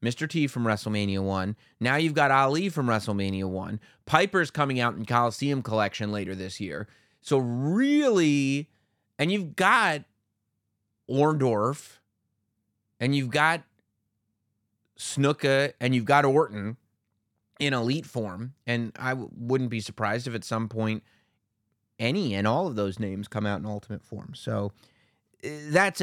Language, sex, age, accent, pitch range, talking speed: English, male, 30-49, American, 105-130 Hz, 140 wpm